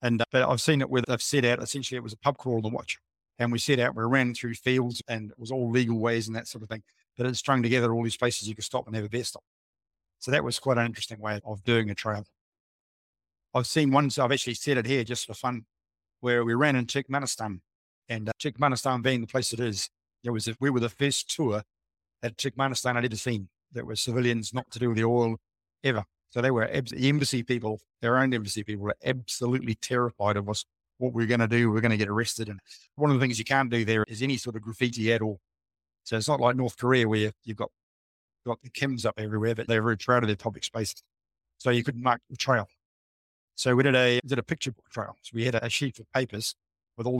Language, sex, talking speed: English, male, 250 wpm